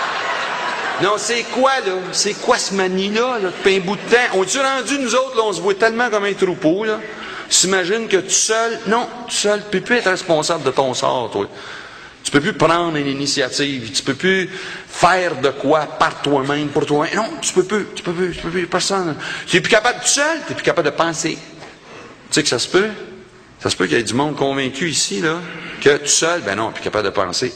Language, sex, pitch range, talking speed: French, male, 130-190 Hz, 240 wpm